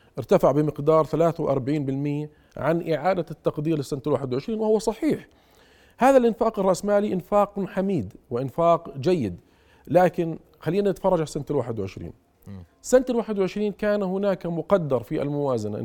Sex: male